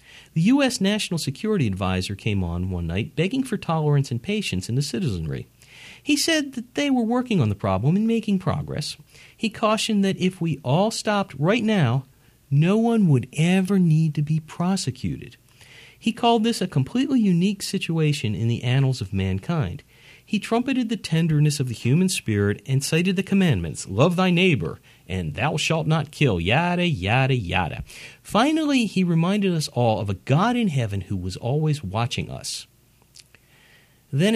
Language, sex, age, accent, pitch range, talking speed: English, male, 40-59, American, 120-190 Hz, 170 wpm